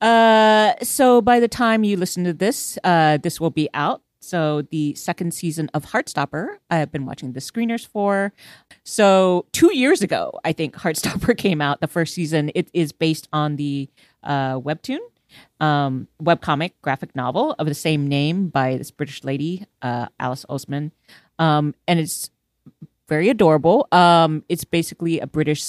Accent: American